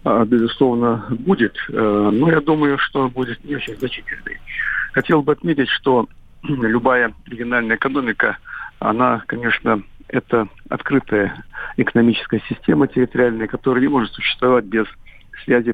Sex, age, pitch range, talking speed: male, 50-69, 105-125 Hz, 115 wpm